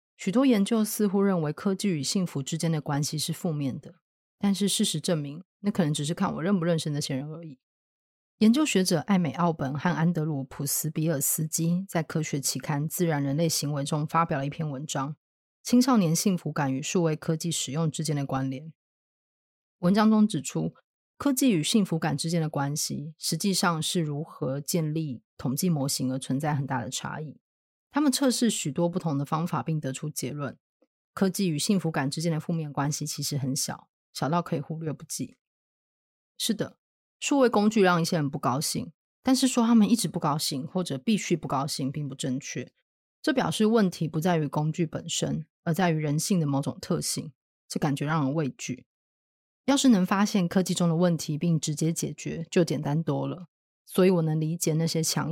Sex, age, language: female, 30-49, Chinese